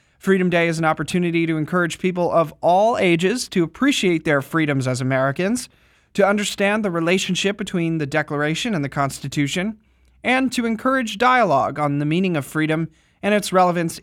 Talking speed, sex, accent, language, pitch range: 165 wpm, male, American, English, 150-190 Hz